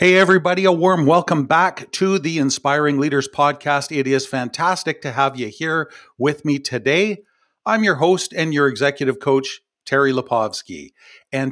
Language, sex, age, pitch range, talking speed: English, male, 50-69, 130-160 Hz, 160 wpm